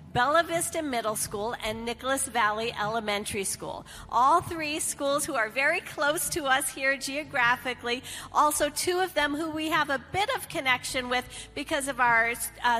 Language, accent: English, American